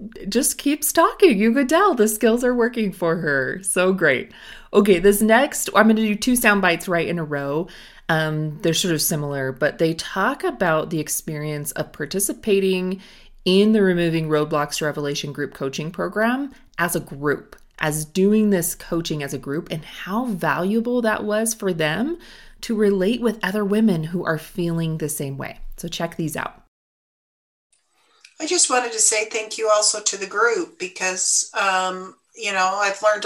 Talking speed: 175 wpm